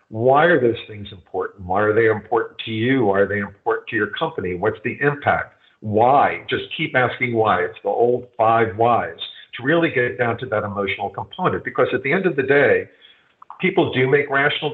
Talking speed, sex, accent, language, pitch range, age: 205 wpm, male, American, English, 120-180 Hz, 50-69